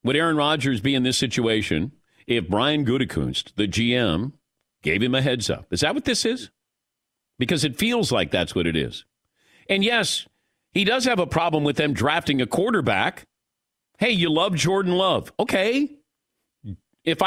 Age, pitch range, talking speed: 50-69, 130-195 Hz, 170 wpm